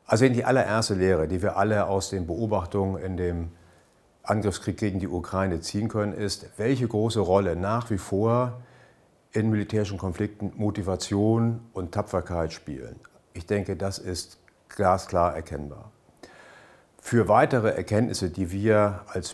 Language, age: German, 60-79